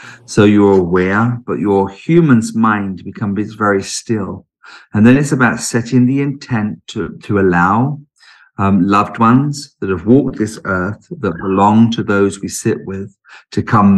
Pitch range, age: 100-120 Hz, 50-69